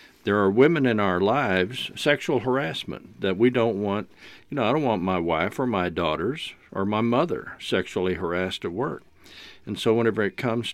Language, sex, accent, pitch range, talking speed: English, male, American, 95-120 Hz, 190 wpm